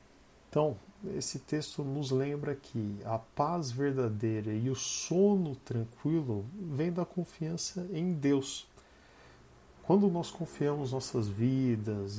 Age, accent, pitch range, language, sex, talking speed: 50-69, Brazilian, 110-140 Hz, Portuguese, male, 115 wpm